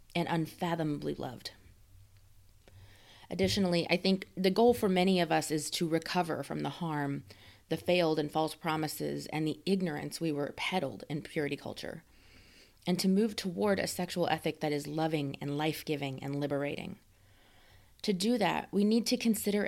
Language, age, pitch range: English, 30-49, 145-190 Hz